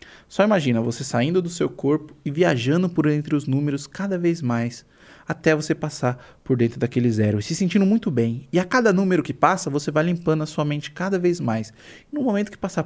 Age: 20-39